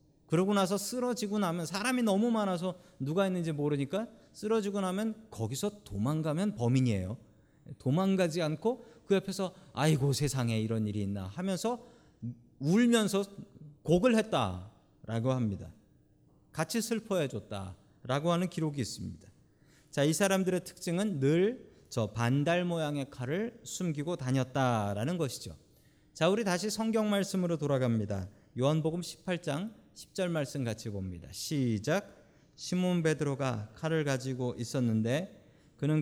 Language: Korean